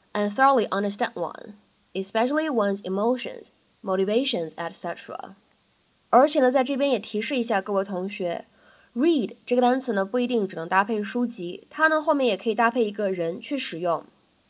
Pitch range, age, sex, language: 200-270 Hz, 20-39, female, Chinese